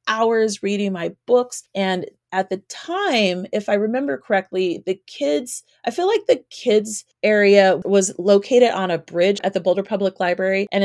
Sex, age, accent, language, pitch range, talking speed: female, 30-49, American, English, 190-250 Hz, 170 wpm